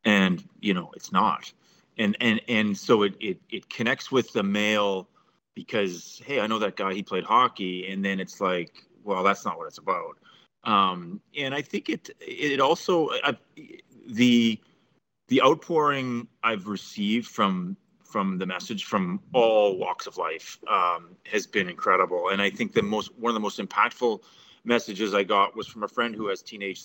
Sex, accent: male, American